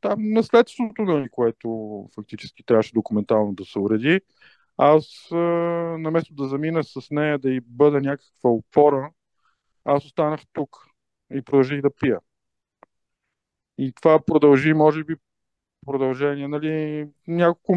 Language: Bulgarian